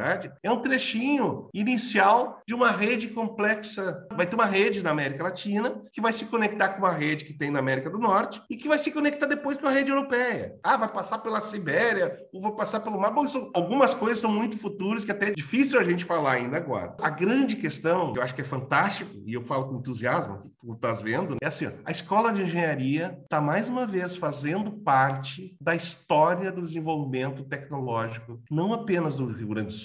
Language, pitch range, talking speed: Portuguese, 135-215 Hz, 210 wpm